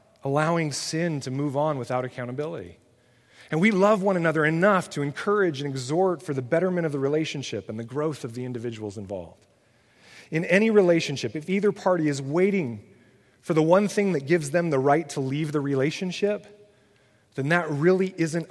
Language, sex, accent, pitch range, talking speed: English, male, American, 125-170 Hz, 180 wpm